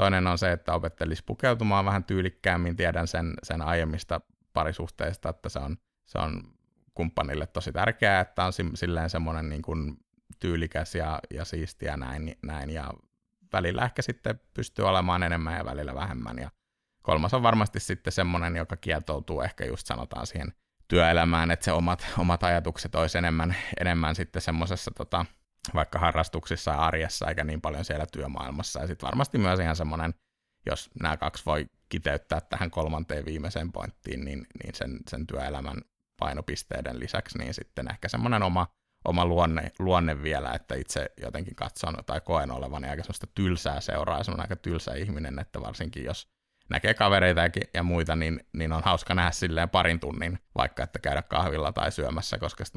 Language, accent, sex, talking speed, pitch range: Finnish, native, male, 170 wpm, 80-95 Hz